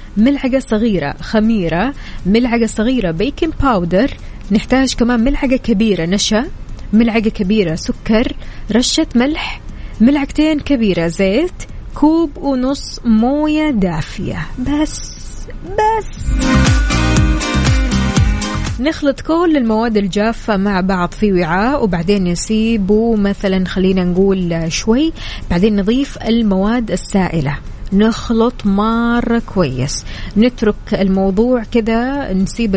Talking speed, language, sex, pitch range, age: 95 wpm, Arabic, female, 190-245 Hz, 20-39